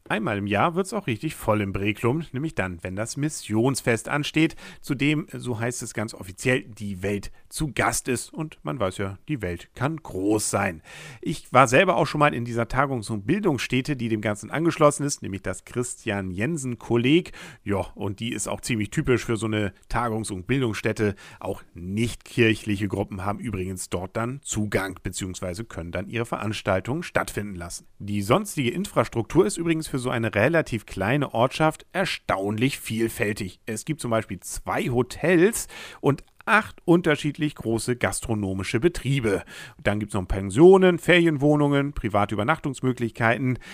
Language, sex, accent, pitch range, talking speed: English, male, German, 105-145 Hz, 160 wpm